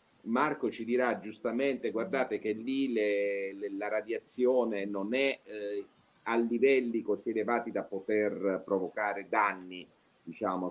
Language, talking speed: Italian, 130 wpm